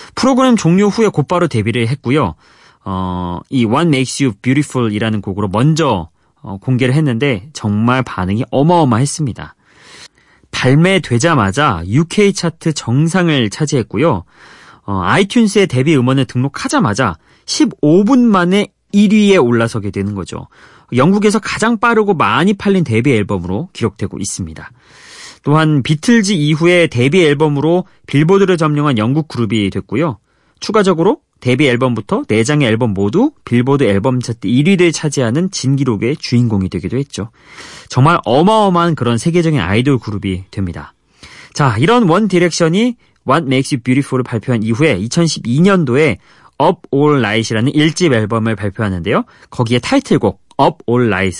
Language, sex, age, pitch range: Korean, male, 30-49, 110-170 Hz